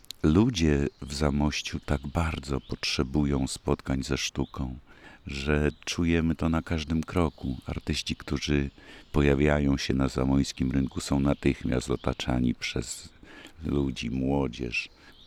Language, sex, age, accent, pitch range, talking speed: Polish, male, 50-69, native, 65-75 Hz, 110 wpm